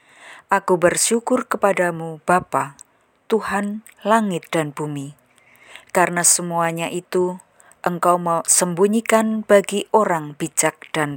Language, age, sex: Indonesian, 20-39, female